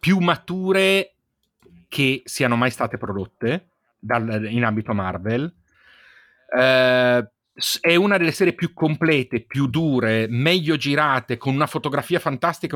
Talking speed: 120 wpm